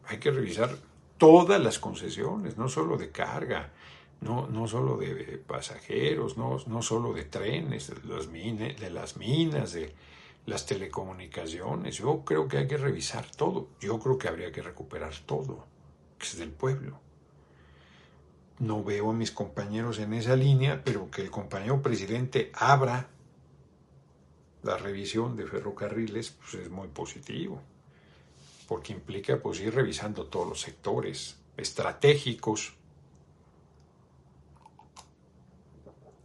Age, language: 60-79, Spanish